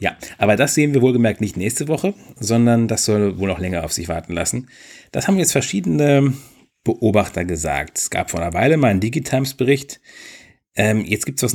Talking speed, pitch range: 210 wpm, 100-125 Hz